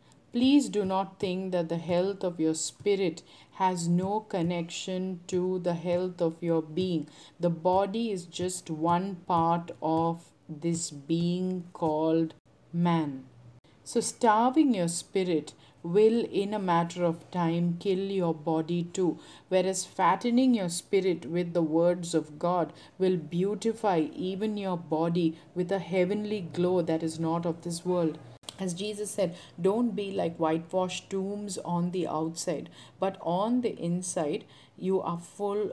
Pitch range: 165-190 Hz